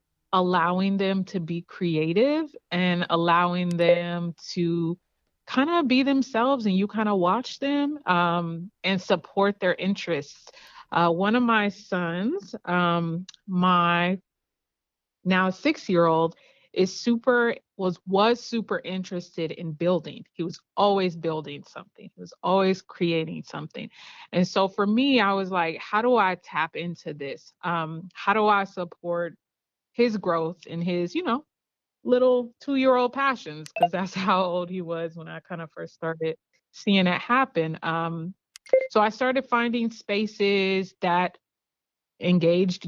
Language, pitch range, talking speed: English, 170-210 Hz, 145 wpm